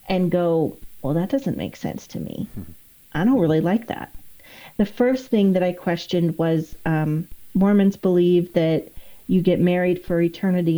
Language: English